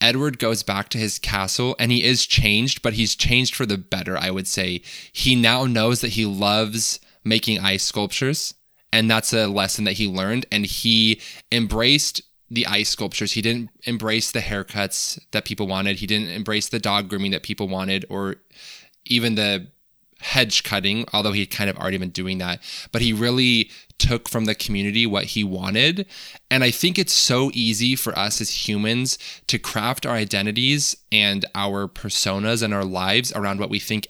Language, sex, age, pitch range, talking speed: English, male, 20-39, 100-120 Hz, 185 wpm